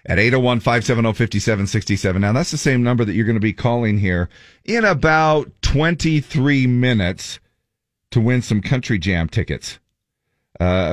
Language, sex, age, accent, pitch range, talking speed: English, male, 40-59, American, 85-110 Hz, 135 wpm